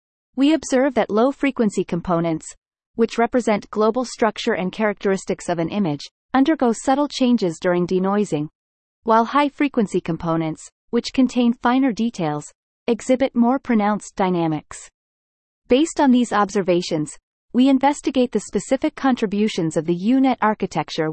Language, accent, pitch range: English, American, 175-250 Hz